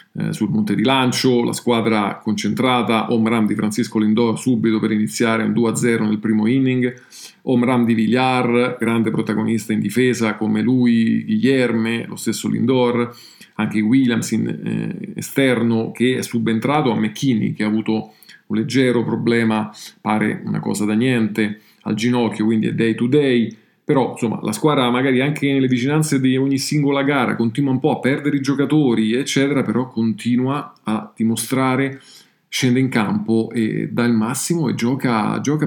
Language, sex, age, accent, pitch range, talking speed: Italian, male, 40-59, native, 110-130 Hz, 155 wpm